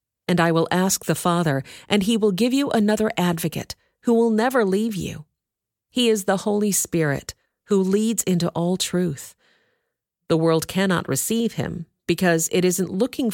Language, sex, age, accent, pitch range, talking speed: English, female, 40-59, American, 155-200 Hz, 165 wpm